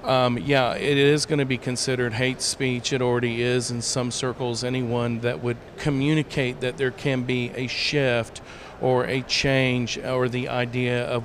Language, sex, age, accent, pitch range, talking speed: English, male, 40-59, American, 125-150 Hz, 175 wpm